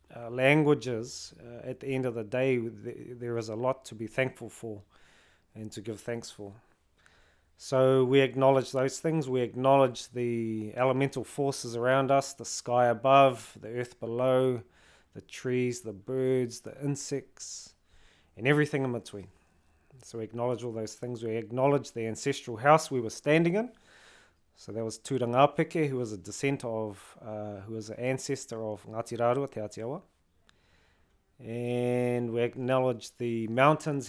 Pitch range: 110-135 Hz